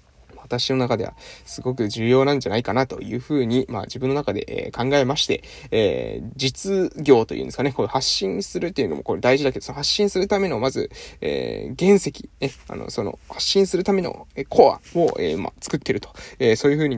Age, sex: 20-39, male